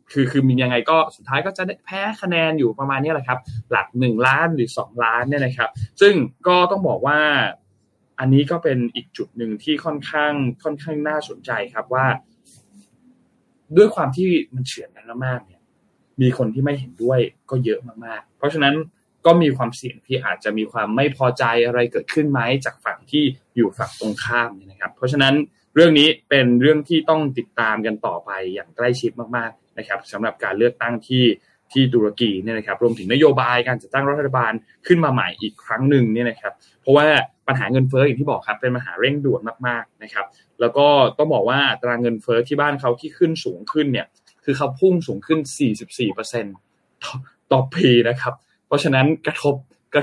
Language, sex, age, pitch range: Thai, male, 20-39, 120-150 Hz